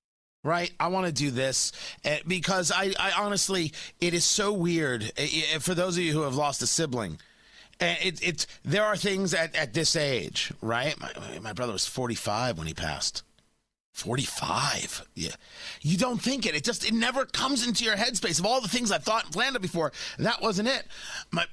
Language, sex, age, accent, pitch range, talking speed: English, male, 30-49, American, 155-240 Hz, 200 wpm